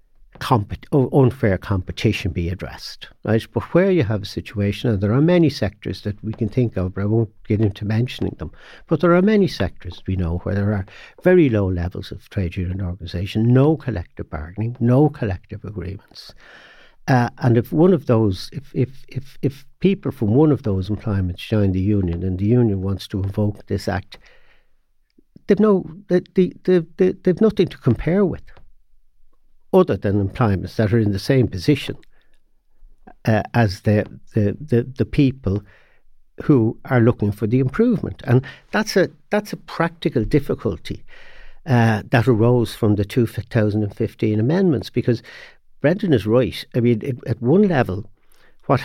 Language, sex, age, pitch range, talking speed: English, male, 60-79, 100-135 Hz, 170 wpm